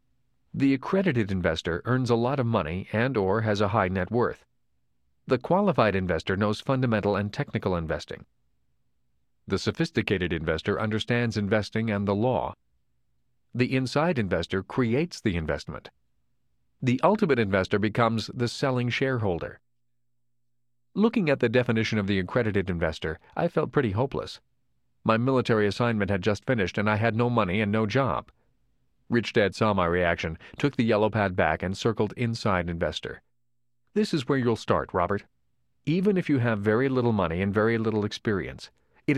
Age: 40-59